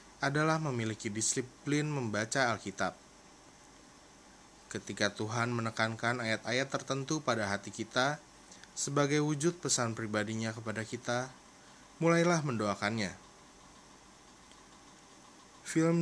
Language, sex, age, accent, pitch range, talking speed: Indonesian, male, 20-39, native, 110-135 Hz, 80 wpm